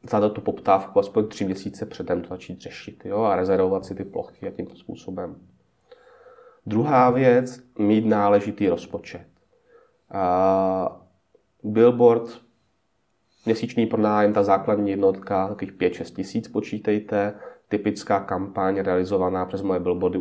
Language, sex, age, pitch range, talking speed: Czech, male, 30-49, 95-110 Hz, 120 wpm